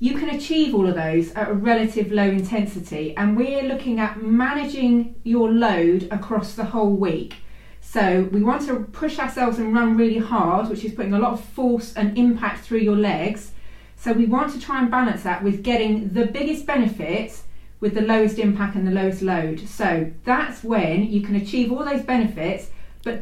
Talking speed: 195 wpm